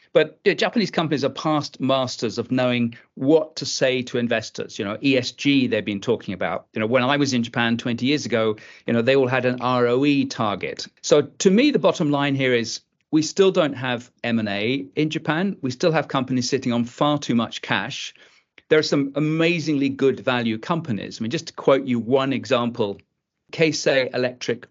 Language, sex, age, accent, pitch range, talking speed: English, male, 40-59, British, 115-145 Hz, 200 wpm